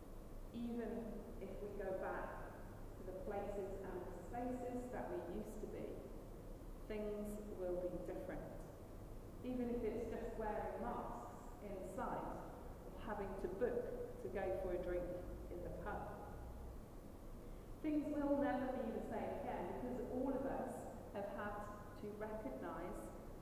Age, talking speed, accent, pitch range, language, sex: 30-49, 140 wpm, British, 180-240 Hz, English, female